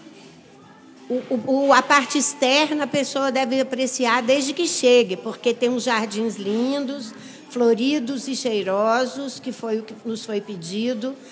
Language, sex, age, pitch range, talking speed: Portuguese, female, 60-79, 215-255 Hz, 135 wpm